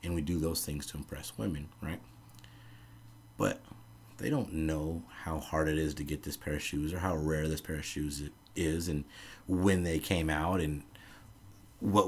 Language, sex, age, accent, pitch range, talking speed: English, male, 30-49, American, 80-100 Hz, 190 wpm